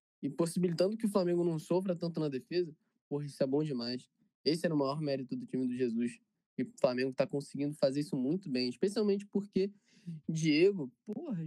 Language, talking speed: Portuguese, 195 wpm